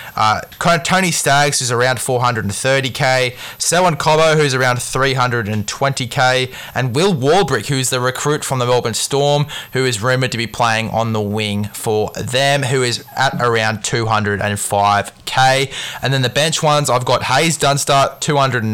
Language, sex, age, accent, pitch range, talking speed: English, male, 20-39, Australian, 110-135 Hz, 155 wpm